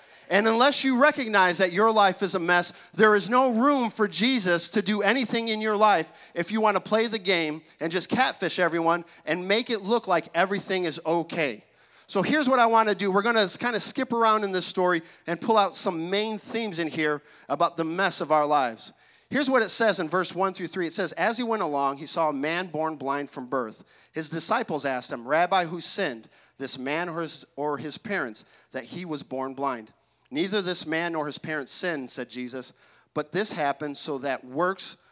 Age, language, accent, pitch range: 40-59, English, American, 155-220 Hz